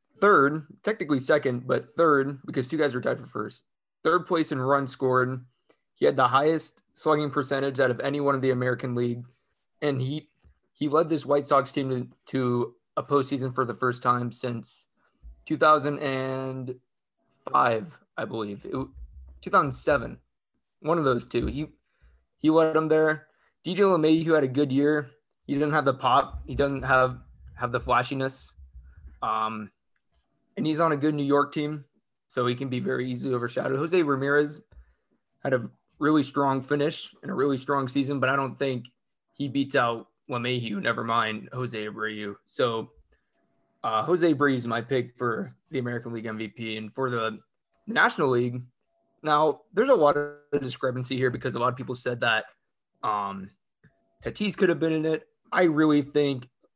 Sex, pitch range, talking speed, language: male, 125-150 Hz, 170 wpm, English